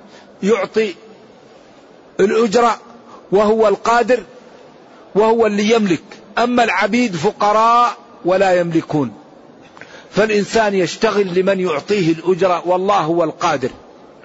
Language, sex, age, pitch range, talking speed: Arabic, male, 50-69, 180-225 Hz, 85 wpm